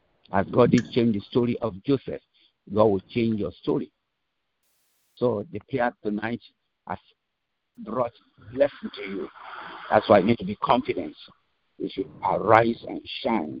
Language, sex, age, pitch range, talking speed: English, male, 60-79, 105-130 Hz, 150 wpm